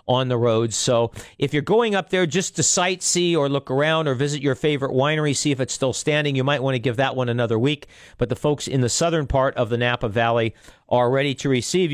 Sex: male